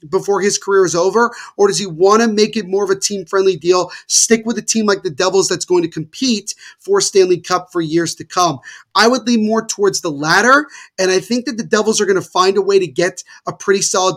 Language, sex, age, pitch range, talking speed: English, male, 30-49, 180-220 Hz, 255 wpm